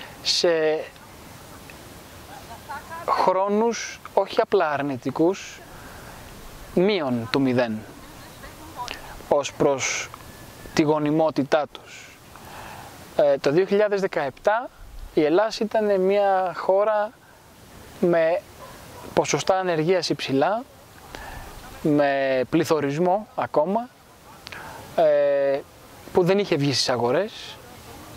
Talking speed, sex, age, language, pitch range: 75 wpm, male, 20-39, Greek, 150-195 Hz